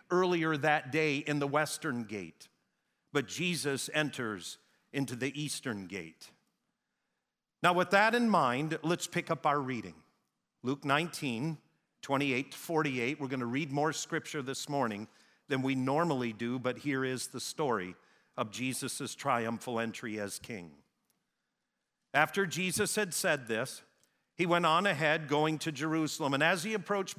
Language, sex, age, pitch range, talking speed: English, male, 50-69, 130-170 Hz, 150 wpm